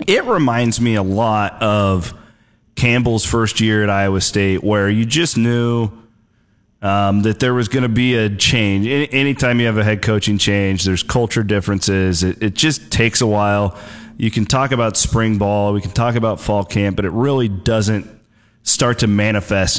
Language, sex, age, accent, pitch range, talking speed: English, male, 30-49, American, 100-125 Hz, 185 wpm